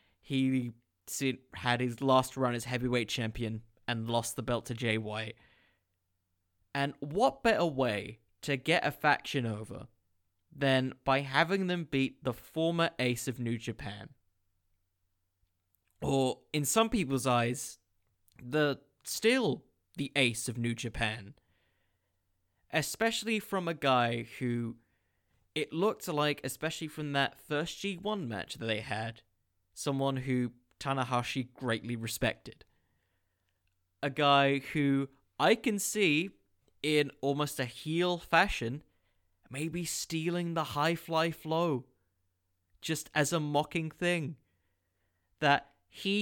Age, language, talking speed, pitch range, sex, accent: 20-39, English, 120 wpm, 105-155 Hz, male, British